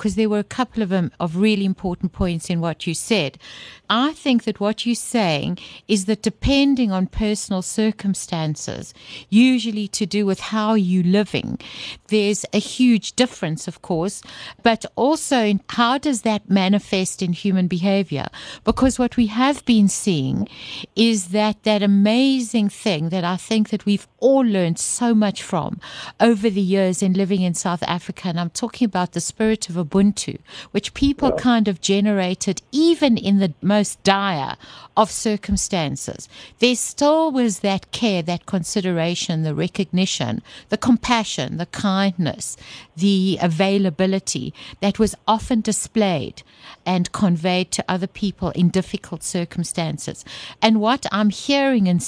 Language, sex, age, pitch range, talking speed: English, female, 60-79, 180-220 Hz, 150 wpm